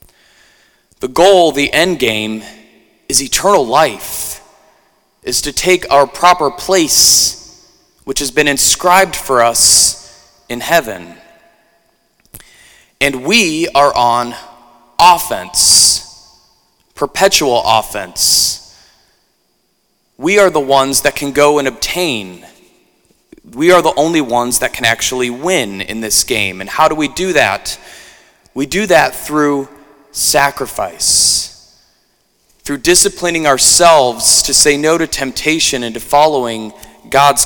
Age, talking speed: 20-39, 115 wpm